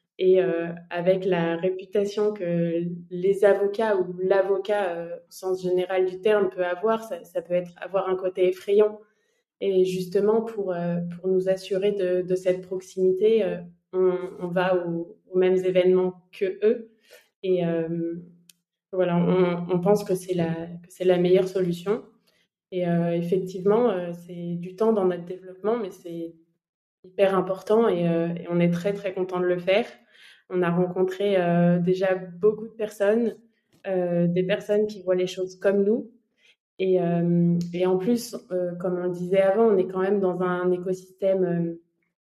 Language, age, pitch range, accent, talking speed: French, 20-39, 180-200 Hz, French, 175 wpm